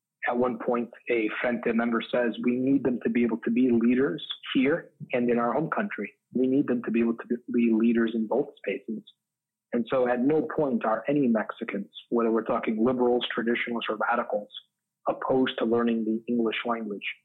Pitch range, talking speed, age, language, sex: 115-130 Hz, 190 wpm, 40-59, English, male